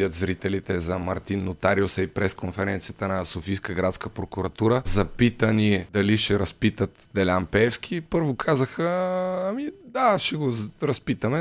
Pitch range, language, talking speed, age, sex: 100-130 Hz, Bulgarian, 120 wpm, 30-49, male